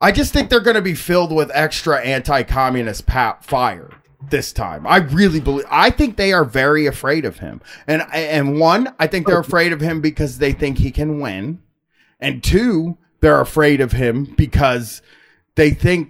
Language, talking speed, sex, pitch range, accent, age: English, 185 wpm, male, 120-175 Hz, American, 30-49